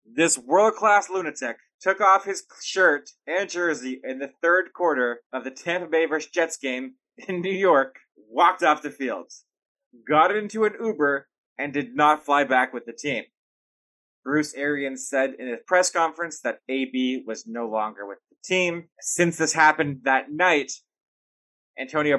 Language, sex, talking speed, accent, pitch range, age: English, male, 160 wpm, American, 130-160 Hz, 20-39